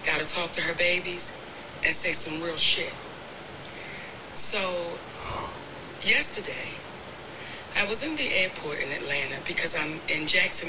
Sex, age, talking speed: female, 40-59, 135 wpm